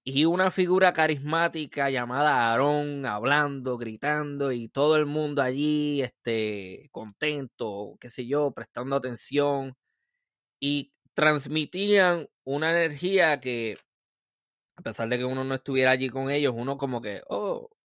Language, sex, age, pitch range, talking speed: Spanish, male, 20-39, 115-150 Hz, 130 wpm